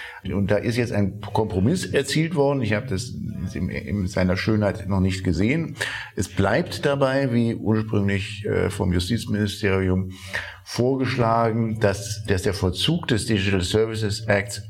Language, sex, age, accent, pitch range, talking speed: German, male, 50-69, German, 95-125 Hz, 135 wpm